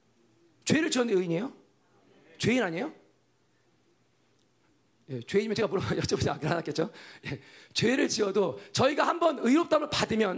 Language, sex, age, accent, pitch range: Korean, male, 40-59, native, 160-275 Hz